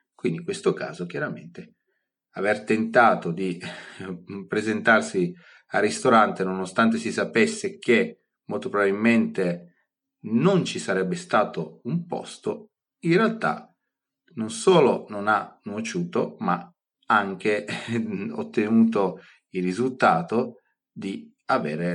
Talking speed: 100 wpm